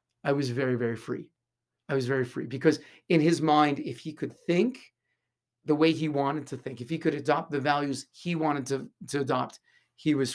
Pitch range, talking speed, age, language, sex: 135-160 Hz, 210 wpm, 40-59, English, male